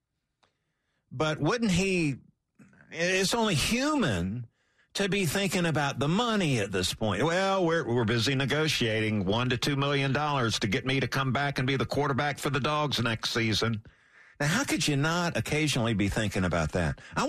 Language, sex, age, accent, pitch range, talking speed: English, male, 50-69, American, 115-165 Hz, 175 wpm